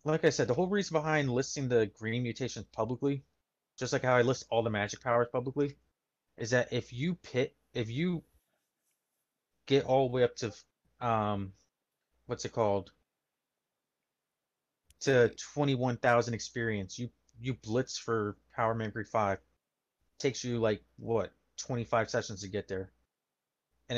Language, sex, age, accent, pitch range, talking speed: English, male, 30-49, American, 110-135 Hz, 155 wpm